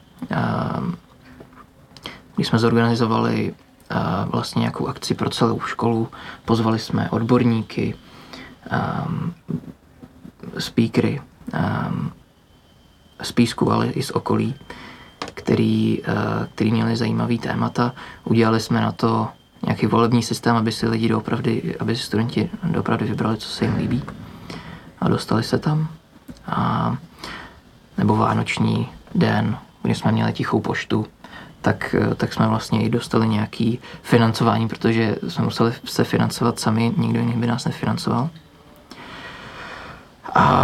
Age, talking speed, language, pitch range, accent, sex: 20-39, 110 wpm, Czech, 115-125 Hz, native, male